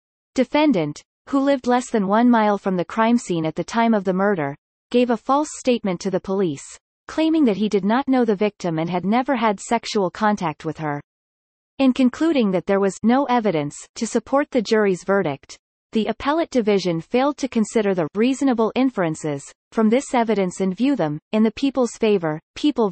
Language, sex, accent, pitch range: English, female, American, 185-245 Hz